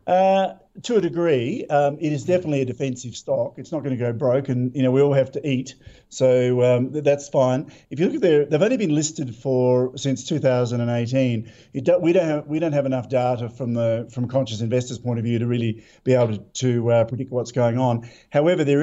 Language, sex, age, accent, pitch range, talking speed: English, male, 50-69, Australian, 125-145 Hz, 230 wpm